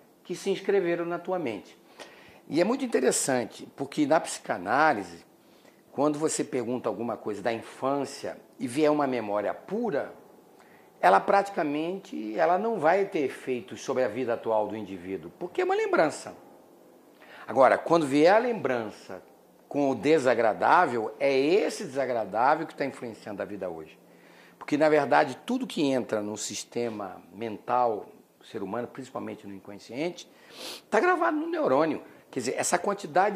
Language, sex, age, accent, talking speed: English, male, 50-69, Brazilian, 145 wpm